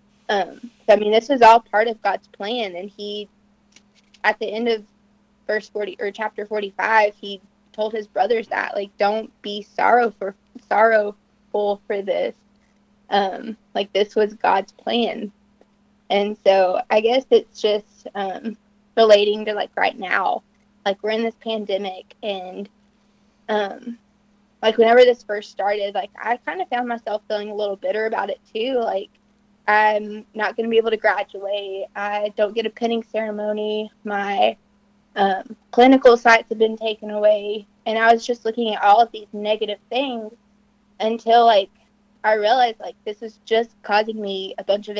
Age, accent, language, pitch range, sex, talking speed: 20-39, American, English, 205-225 Hz, female, 165 wpm